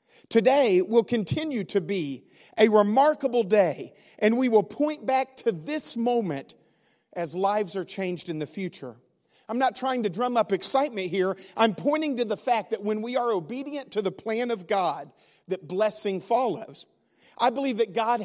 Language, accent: English, American